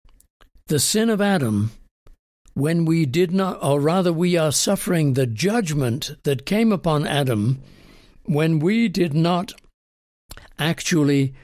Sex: male